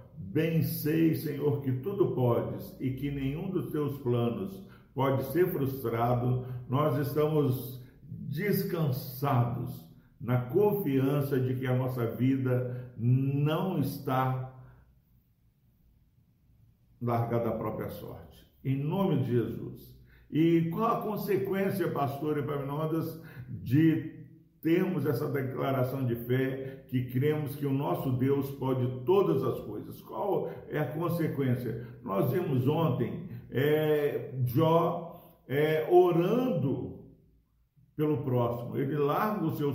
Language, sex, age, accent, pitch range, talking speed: Portuguese, male, 50-69, Brazilian, 130-165 Hz, 110 wpm